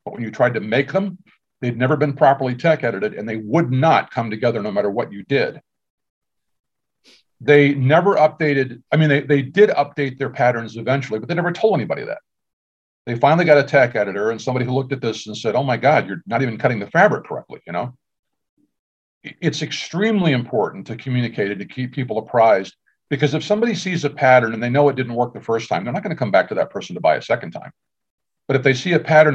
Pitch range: 120-150 Hz